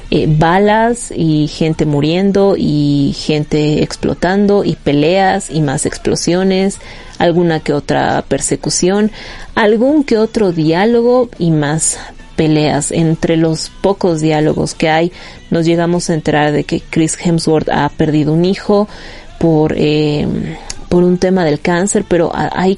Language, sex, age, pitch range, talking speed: Spanish, female, 30-49, 155-200 Hz, 135 wpm